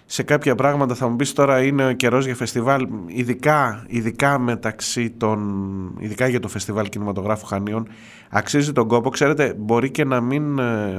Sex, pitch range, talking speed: male, 105-125 Hz, 165 wpm